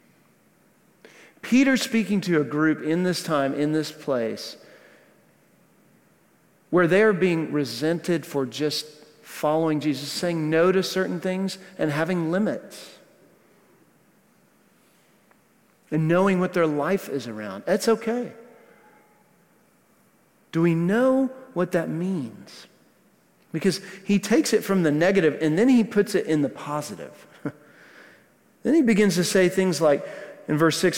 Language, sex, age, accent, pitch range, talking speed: English, male, 40-59, American, 155-200 Hz, 130 wpm